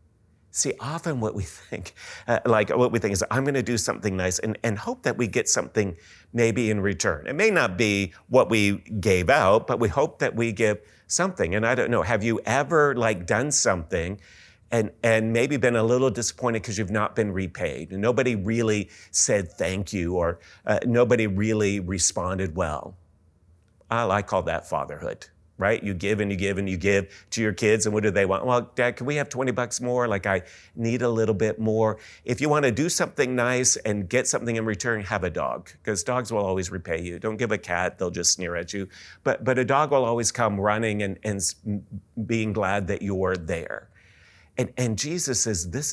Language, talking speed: English, 215 wpm